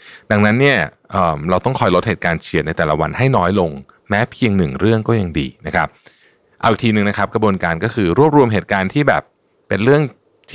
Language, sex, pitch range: Thai, male, 80-115 Hz